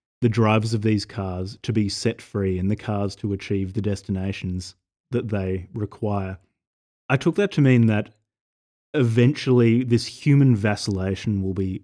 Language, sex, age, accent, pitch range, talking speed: English, male, 30-49, Australian, 95-115 Hz, 155 wpm